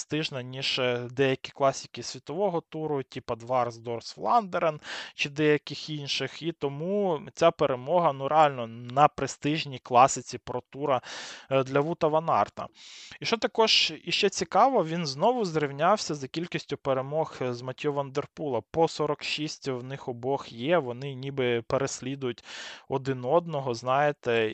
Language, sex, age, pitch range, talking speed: Ukrainian, male, 20-39, 125-150 Hz, 130 wpm